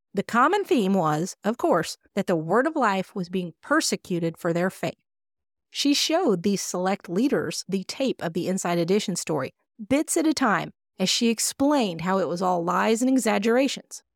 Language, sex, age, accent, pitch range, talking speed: English, female, 30-49, American, 180-240 Hz, 180 wpm